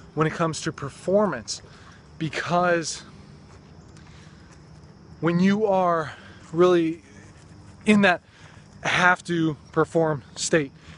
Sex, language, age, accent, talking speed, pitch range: male, English, 20-39, American, 85 wpm, 135-165 Hz